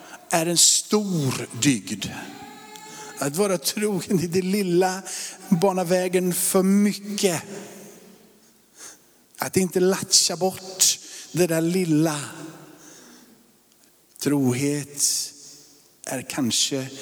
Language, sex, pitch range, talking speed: Swedish, male, 115-185 Hz, 80 wpm